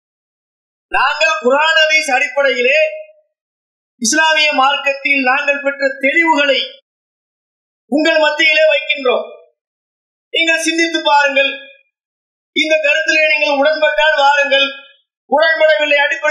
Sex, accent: male, Indian